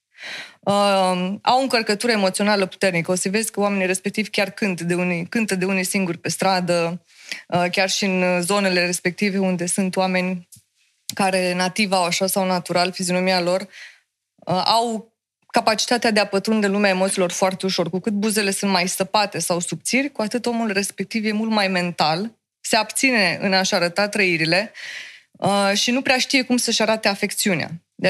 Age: 20-39